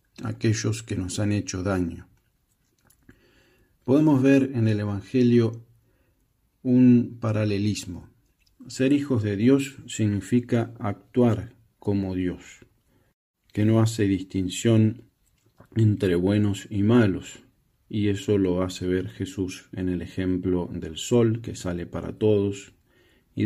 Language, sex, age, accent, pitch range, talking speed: Spanish, male, 40-59, Argentinian, 95-125 Hz, 115 wpm